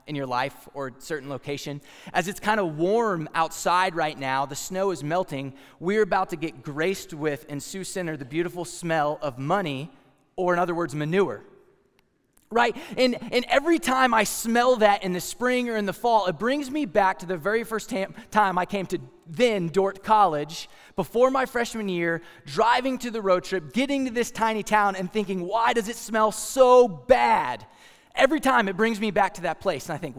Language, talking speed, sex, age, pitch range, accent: English, 200 wpm, male, 20-39, 170-235 Hz, American